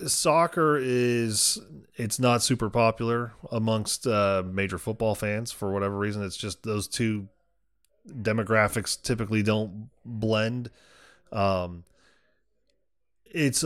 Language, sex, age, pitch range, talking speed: English, male, 20-39, 100-120 Hz, 105 wpm